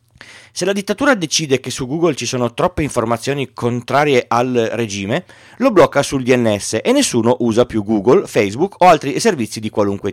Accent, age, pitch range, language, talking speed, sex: native, 30-49, 110-155 Hz, Italian, 170 wpm, male